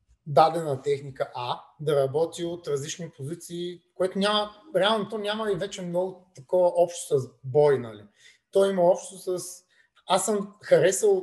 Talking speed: 150 wpm